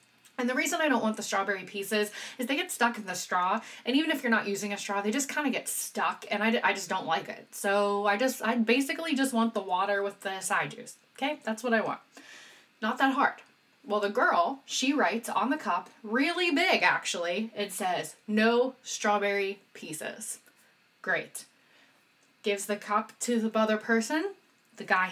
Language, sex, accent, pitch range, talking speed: English, female, American, 205-275 Hz, 200 wpm